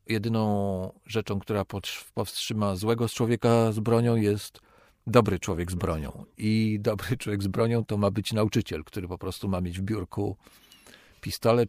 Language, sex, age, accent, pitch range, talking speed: Polish, male, 40-59, native, 95-125 Hz, 155 wpm